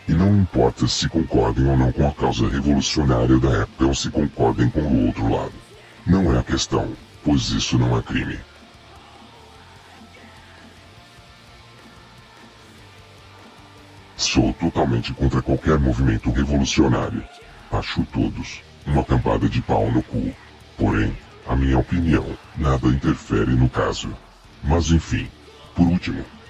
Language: Portuguese